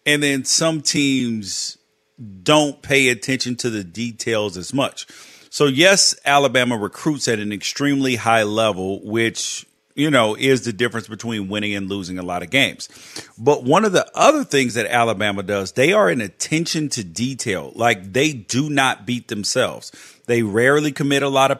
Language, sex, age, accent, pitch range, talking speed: English, male, 40-59, American, 115-145 Hz, 170 wpm